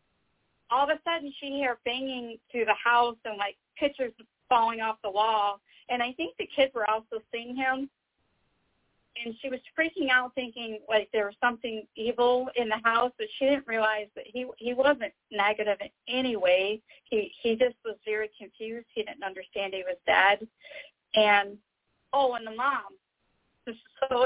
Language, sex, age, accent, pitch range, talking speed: English, female, 40-59, American, 210-255 Hz, 175 wpm